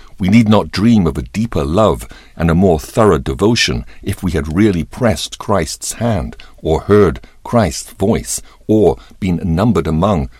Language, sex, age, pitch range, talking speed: English, male, 60-79, 75-110 Hz, 160 wpm